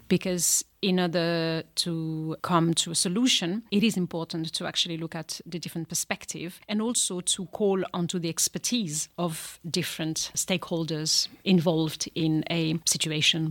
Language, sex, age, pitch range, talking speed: Hungarian, female, 30-49, 170-210 Hz, 140 wpm